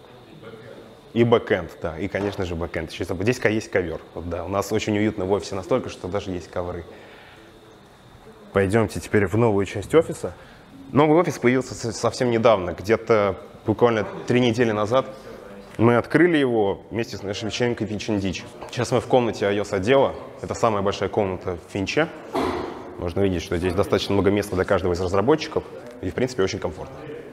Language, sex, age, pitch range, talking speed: Russian, male, 20-39, 100-125 Hz, 165 wpm